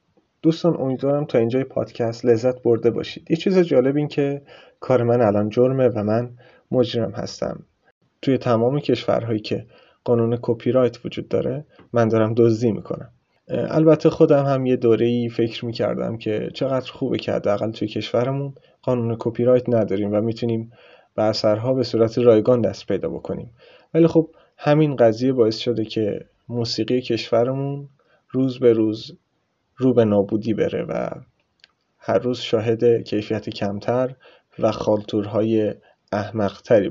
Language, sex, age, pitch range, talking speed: Persian, male, 30-49, 110-130 Hz, 140 wpm